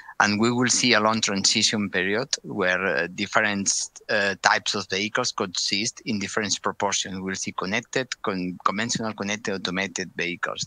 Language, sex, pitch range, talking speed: English, male, 100-115 Hz, 155 wpm